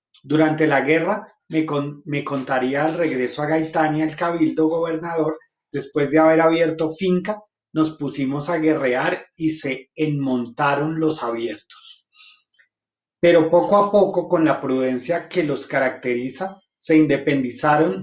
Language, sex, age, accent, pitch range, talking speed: Spanish, male, 30-49, Colombian, 140-170 Hz, 135 wpm